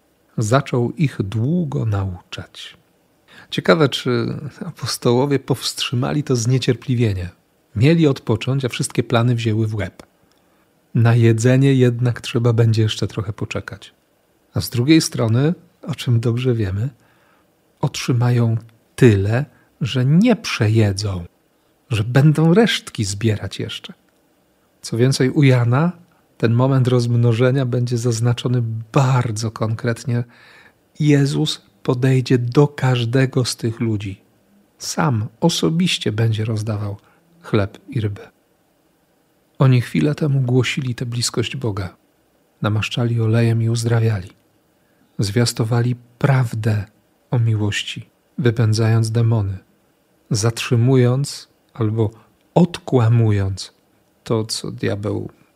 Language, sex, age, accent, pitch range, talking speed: Polish, male, 40-59, native, 115-140 Hz, 100 wpm